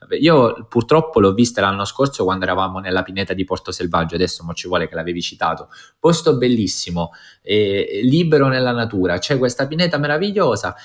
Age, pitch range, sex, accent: 20-39, 90-120 Hz, male, native